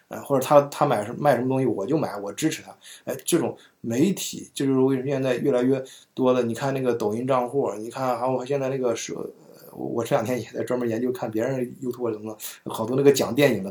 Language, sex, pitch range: Chinese, male, 115-140 Hz